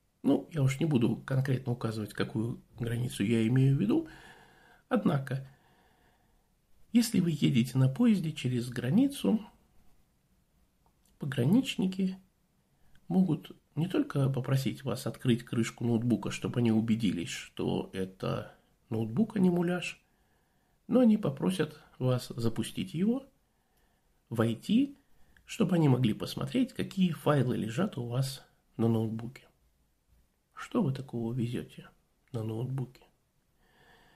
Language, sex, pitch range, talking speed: Russian, male, 120-185 Hz, 110 wpm